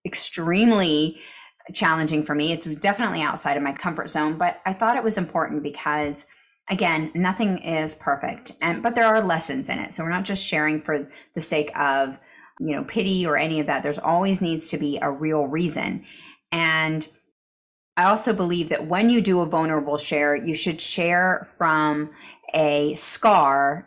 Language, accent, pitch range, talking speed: English, American, 150-185 Hz, 175 wpm